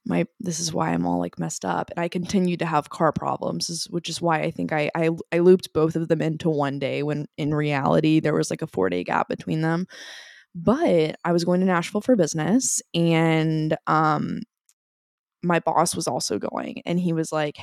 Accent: American